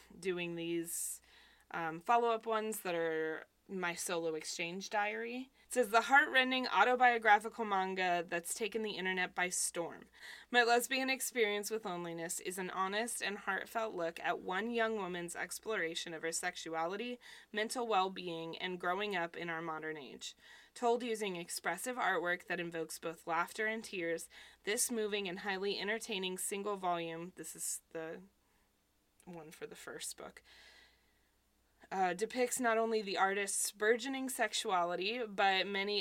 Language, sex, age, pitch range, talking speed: English, female, 20-39, 170-215 Hz, 145 wpm